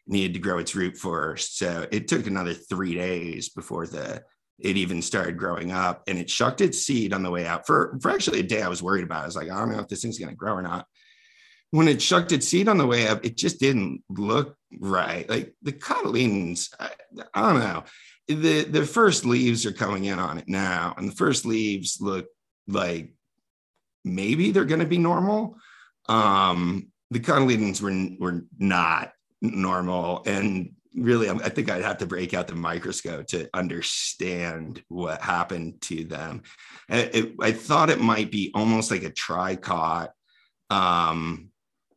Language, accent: English, American